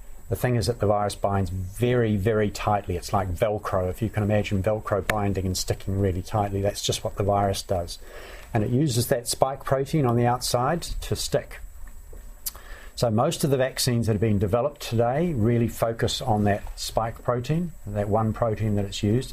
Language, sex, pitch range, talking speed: English, male, 95-115 Hz, 195 wpm